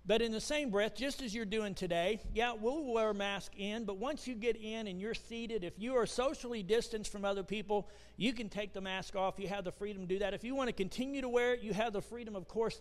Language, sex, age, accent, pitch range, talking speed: English, male, 50-69, American, 185-225 Hz, 275 wpm